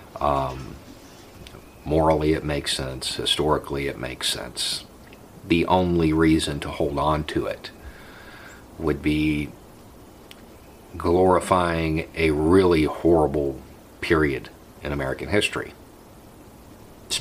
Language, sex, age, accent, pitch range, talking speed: English, male, 50-69, American, 80-95 Hz, 100 wpm